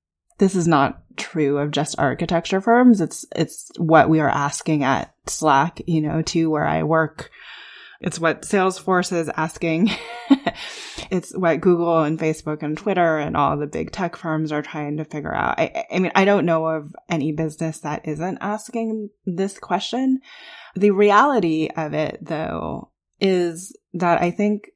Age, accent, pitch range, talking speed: 10-29, American, 155-195 Hz, 165 wpm